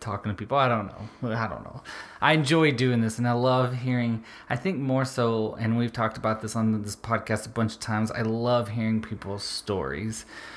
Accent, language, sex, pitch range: American, English, male, 105-120 Hz